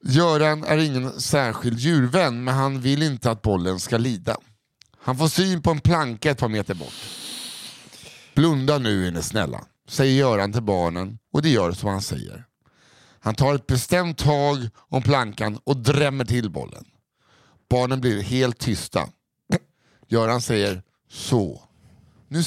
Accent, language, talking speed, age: native, Swedish, 150 wpm, 50-69